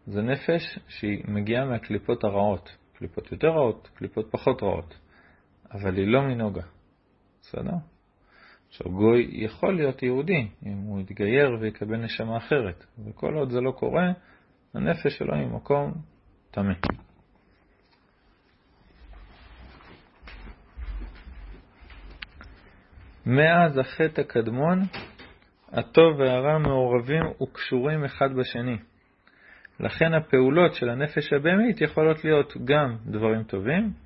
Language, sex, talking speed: Hebrew, male, 100 wpm